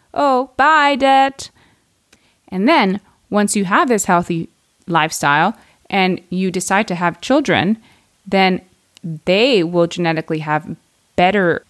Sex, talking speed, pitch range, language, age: female, 120 wpm, 160-205 Hz, English, 20-39